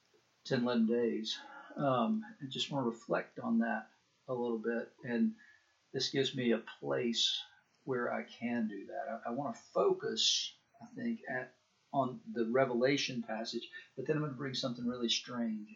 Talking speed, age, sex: 175 wpm, 50-69, male